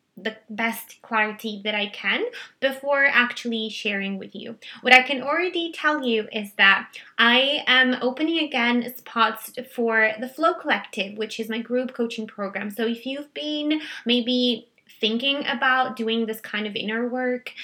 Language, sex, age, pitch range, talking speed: English, female, 20-39, 220-255 Hz, 160 wpm